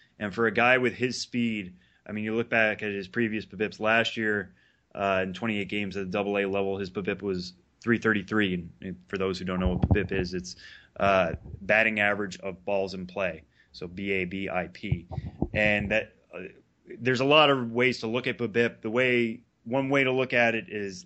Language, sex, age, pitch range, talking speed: English, male, 20-39, 95-110 Hz, 200 wpm